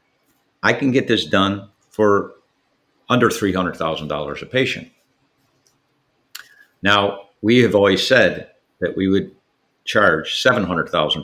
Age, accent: 50-69, American